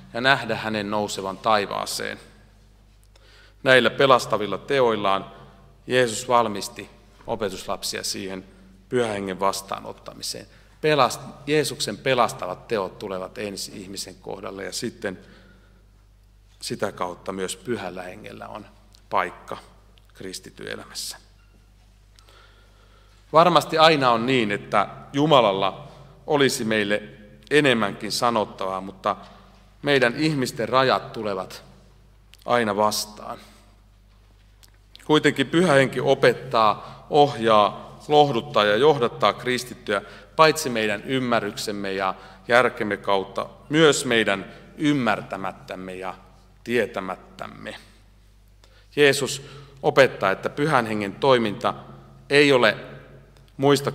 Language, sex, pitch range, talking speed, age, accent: Finnish, male, 100-125 Hz, 85 wpm, 40-59, native